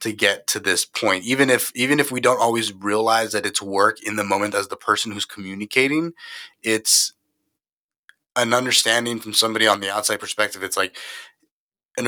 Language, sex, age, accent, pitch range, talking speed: English, male, 30-49, American, 105-125 Hz, 180 wpm